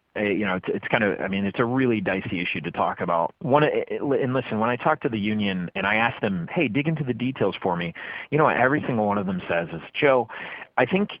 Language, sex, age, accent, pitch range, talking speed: English, male, 30-49, American, 100-140 Hz, 265 wpm